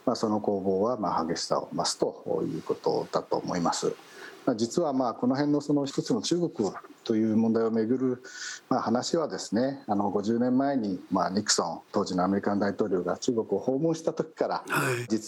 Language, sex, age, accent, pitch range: Japanese, male, 50-69, native, 105-140 Hz